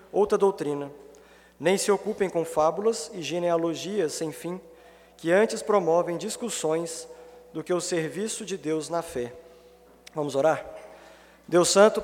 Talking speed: 135 wpm